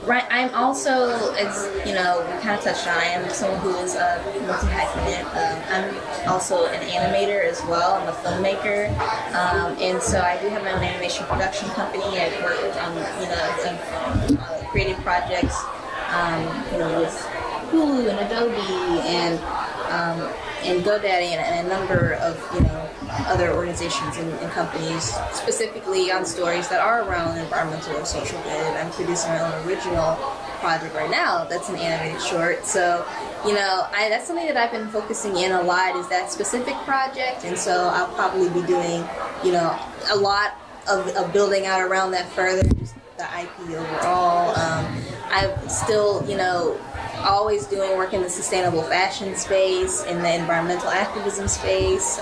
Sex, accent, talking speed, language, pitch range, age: female, American, 170 wpm, English, 180-220 Hz, 10-29